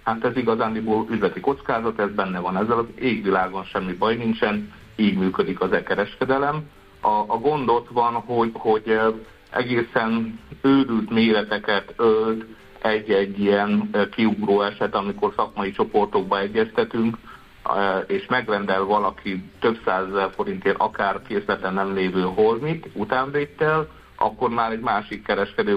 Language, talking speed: Hungarian, 125 wpm